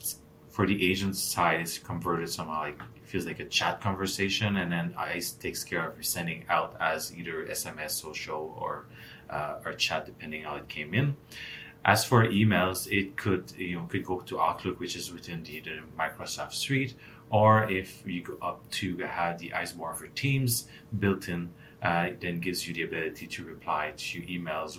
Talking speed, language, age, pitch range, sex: 190 wpm, English, 30-49, 85-105 Hz, male